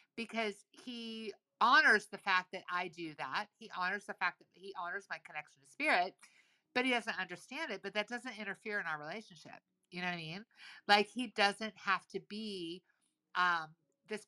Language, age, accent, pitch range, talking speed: English, 50-69, American, 180-230 Hz, 190 wpm